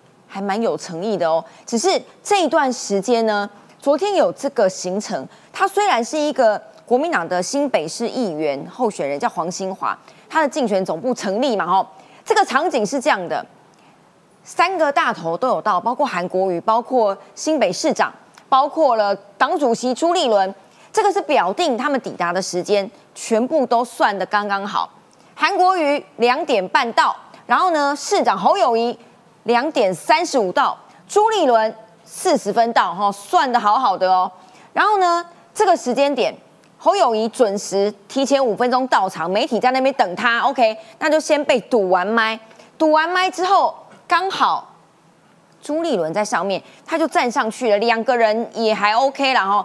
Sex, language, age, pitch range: female, Chinese, 20-39, 205-300 Hz